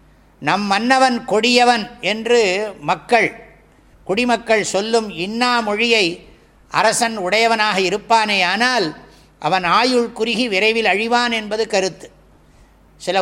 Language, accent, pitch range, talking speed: English, Indian, 190-230 Hz, 95 wpm